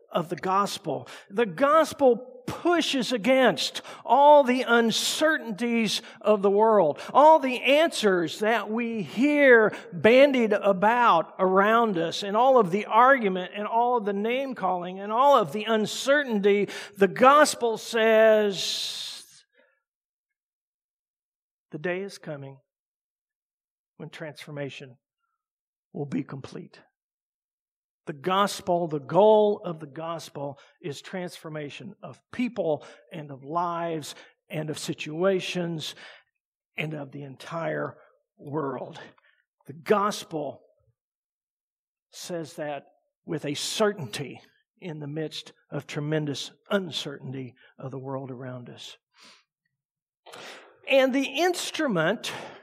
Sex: male